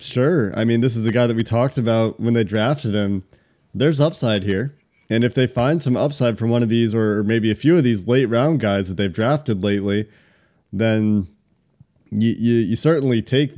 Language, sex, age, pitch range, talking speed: English, male, 20-39, 110-130 Hz, 210 wpm